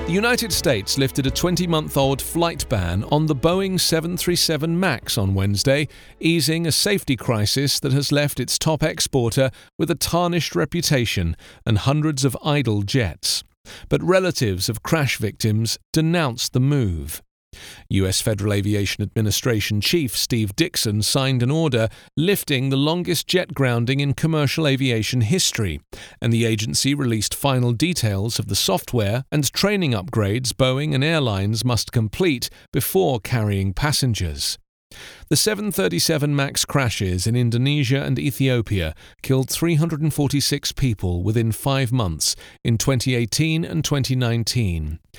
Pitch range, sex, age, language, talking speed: 110-155 Hz, male, 40-59, English, 130 wpm